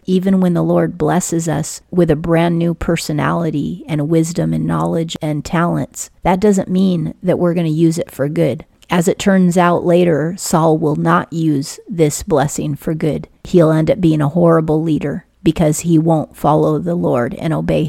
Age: 40-59